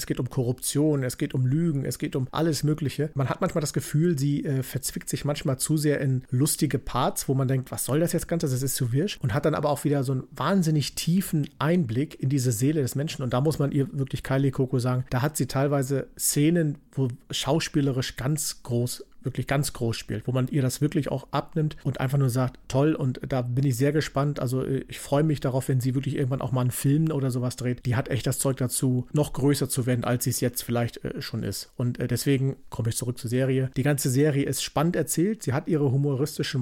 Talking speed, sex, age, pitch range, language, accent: 240 wpm, male, 40-59, 125-150 Hz, German, German